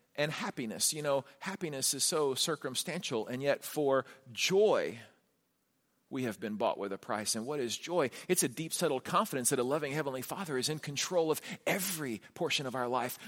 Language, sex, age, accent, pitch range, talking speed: English, male, 40-59, American, 140-195 Hz, 190 wpm